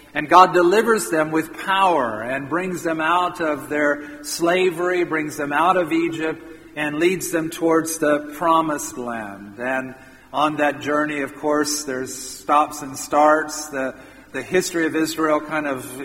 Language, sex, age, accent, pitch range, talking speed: English, male, 50-69, American, 145-170 Hz, 155 wpm